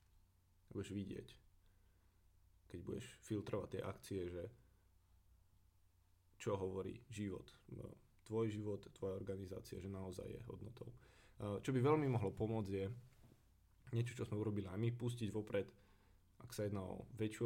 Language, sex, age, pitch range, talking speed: Slovak, male, 20-39, 95-115 Hz, 130 wpm